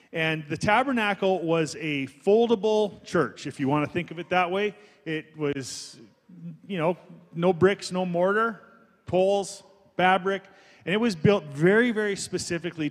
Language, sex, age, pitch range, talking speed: English, male, 30-49, 165-200 Hz, 155 wpm